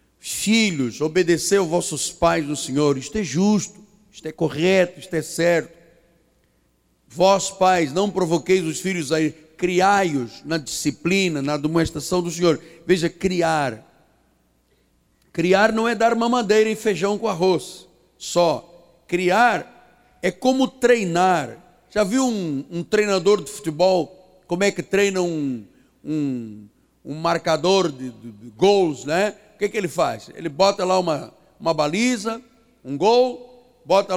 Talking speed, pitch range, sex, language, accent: 140 wpm, 160-215 Hz, male, Portuguese, Brazilian